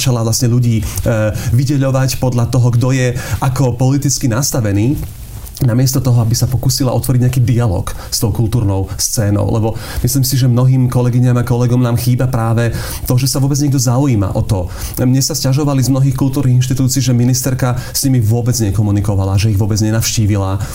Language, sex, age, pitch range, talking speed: Slovak, male, 40-59, 115-135 Hz, 175 wpm